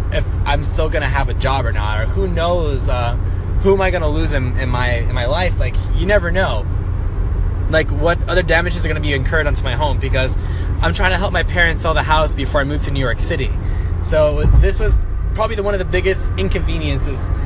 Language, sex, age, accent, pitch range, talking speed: English, male, 20-39, American, 80-95 Hz, 230 wpm